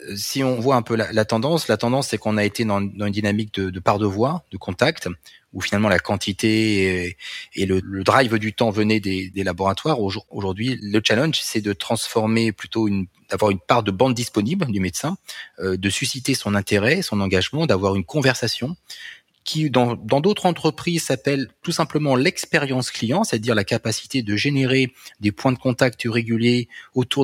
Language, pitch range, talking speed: French, 100-130 Hz, 195 wpm